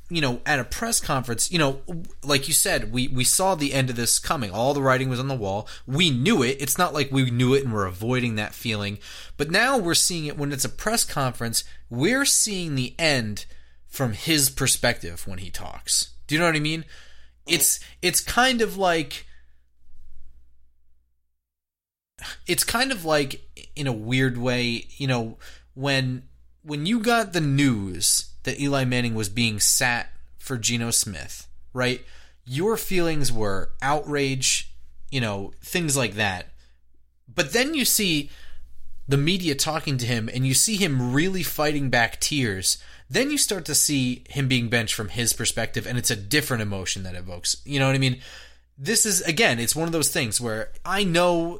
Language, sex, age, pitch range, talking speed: English, male, 30-49, 105-150 Hz, 185 wpm